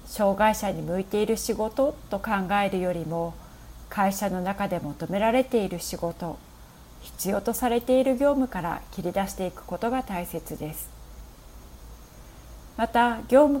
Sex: female